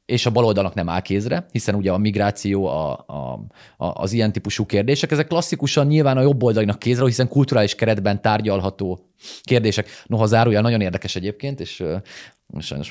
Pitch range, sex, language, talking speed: 90-125 Hz, male, Hungarian, 165 wpm